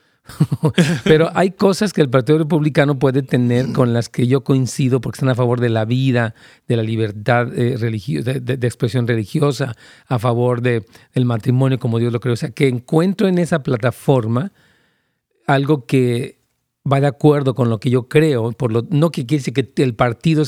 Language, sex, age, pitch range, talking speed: Spanish, male, 40-59, 125-155 Hz, 190 wpm